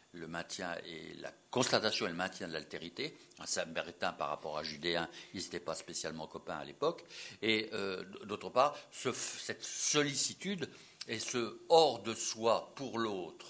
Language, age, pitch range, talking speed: French, 60-79, 95-155 Hz, 145 wpm